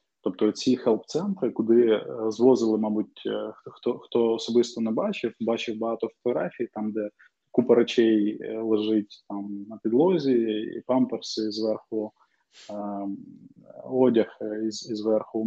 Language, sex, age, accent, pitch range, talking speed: Ukrainian, male, 20-39, native, 105-120 Hz, 115 wpm